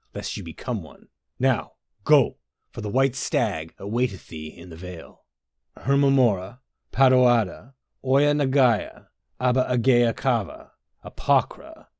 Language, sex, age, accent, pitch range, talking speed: English, male, 40-59, American, 100-135 Hz, 100 wpm